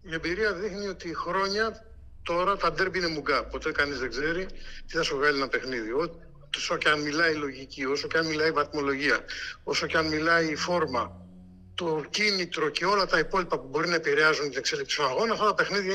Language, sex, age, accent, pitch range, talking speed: Greek, male, 60-79, native, 155-200 Hz, 210 wpm